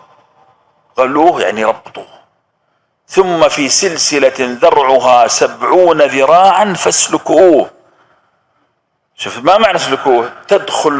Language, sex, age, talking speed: Arabic, male, 50-69, 80 wpm